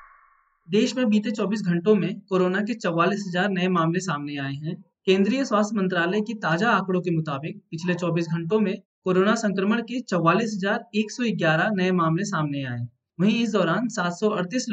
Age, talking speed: 20-39, 155 wpm